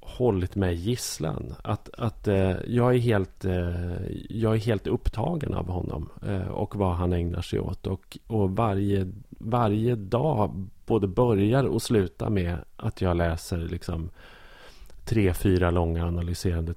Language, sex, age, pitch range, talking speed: Swedish, male, 30-49, 85-110 Hz, 145 wpm